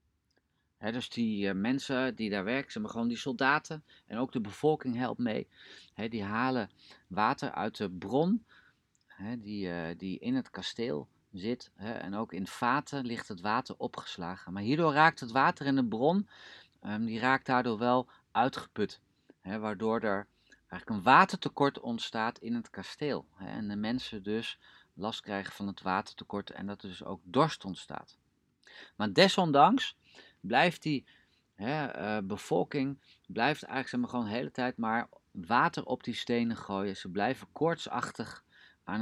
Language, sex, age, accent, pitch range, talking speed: Dutch, male, 30-49, Dutch, 105-135 Hz, 150 wpm